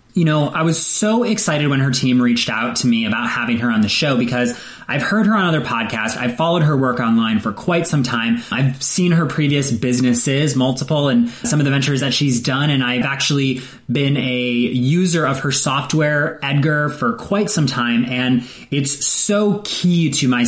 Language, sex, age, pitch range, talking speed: English, male, 20-39, 125-160 Hz, 200 wpm